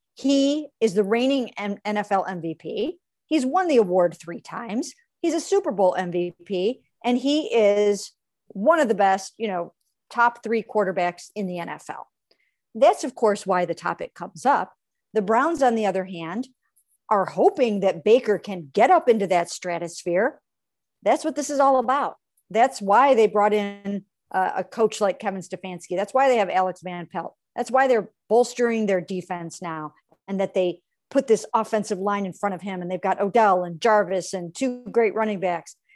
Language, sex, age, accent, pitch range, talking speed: English, female, 50-69, American, 190-245 Hz, 180 wpm